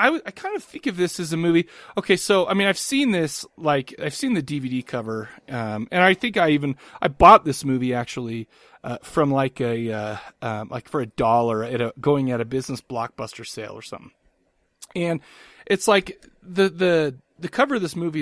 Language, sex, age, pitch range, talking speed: English, male, 30-49, 120-165 Hz, 210 wpm